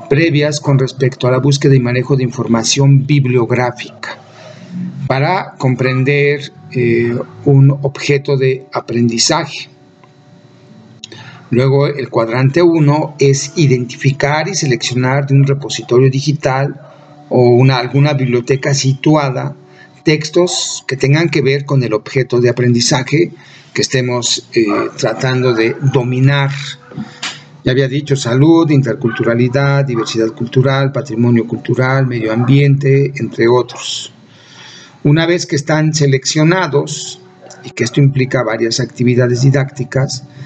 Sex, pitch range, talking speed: male, 125-145 Hz, 115 wpm